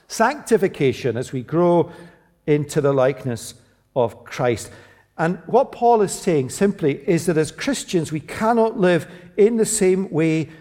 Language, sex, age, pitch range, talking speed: English, male, 50-69, 120-180 Hz, 145 wpm